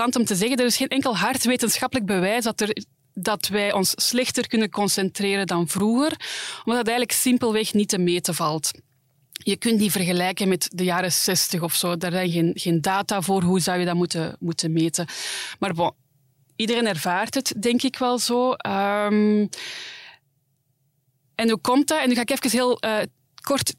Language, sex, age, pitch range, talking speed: Dutch, female, 20-39, 180-225 Hz, 175 wpm